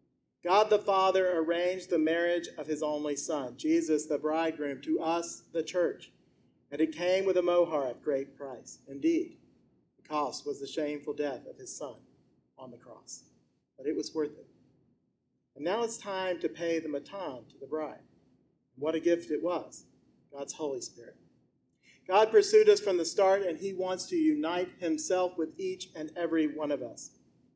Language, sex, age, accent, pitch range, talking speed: English, male, 40-59, American, 150-190 Hz, 180 wpm